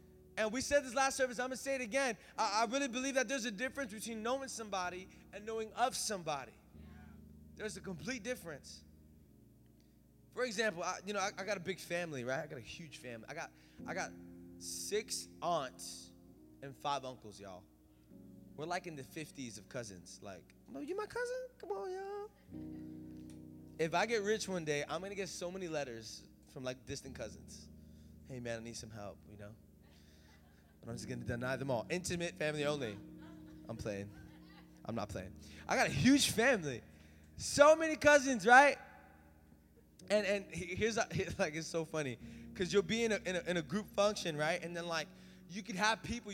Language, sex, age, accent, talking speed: English, male, 20-39, American, 190 wpm